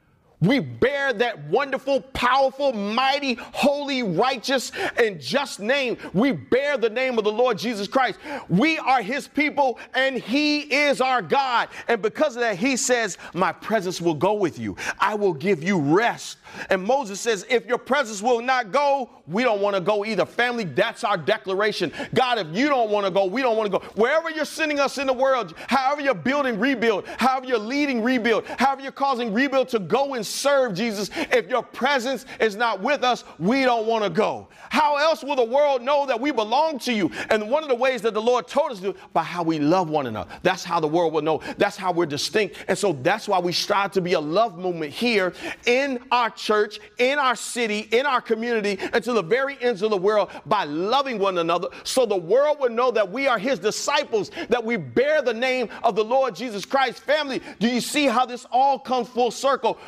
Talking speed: 215 wpm